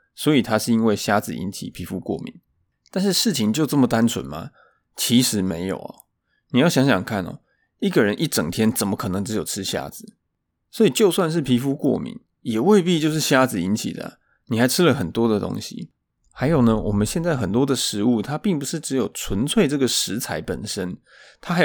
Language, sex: Chinese, male